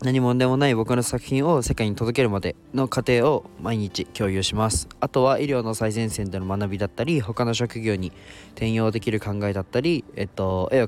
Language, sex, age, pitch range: Japanese, male, 20-39, 100-125 Hz